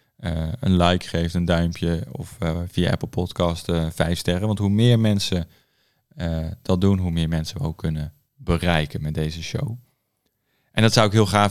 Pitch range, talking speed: 85-110 Hz, 195 wpm